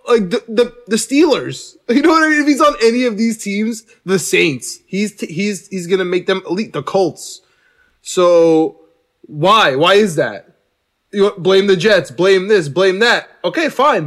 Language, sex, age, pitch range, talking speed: English, male, 20-39, 155-210 Hz, 190 wpm